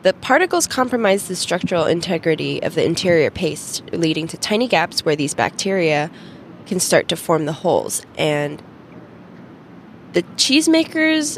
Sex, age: female, 20-39